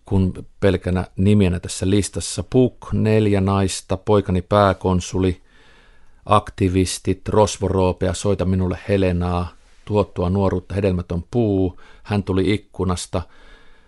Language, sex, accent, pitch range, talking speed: Finnish, male, native, 90-110 Hz, 95 wpm